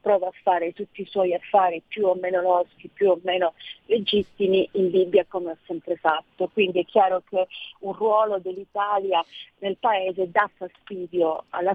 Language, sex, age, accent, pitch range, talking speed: Italian, female, 40-59, native, 180-205 Hz, 170 wpm